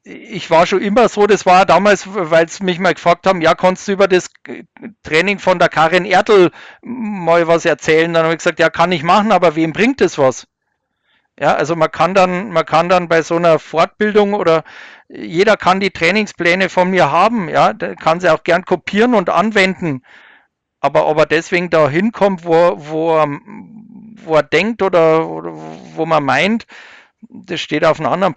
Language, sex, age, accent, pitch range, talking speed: German, male, 50-69, German, 160-200 Hz, 190 wpm